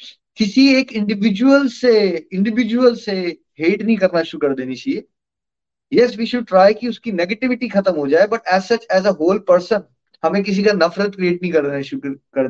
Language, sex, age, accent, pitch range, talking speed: Hindi, male, 30-49, native, 155-230 Hz, 185 wpm